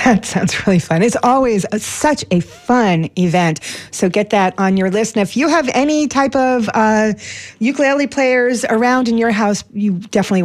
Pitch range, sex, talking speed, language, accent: 180-245 Hz, female, 190 wpm, English, American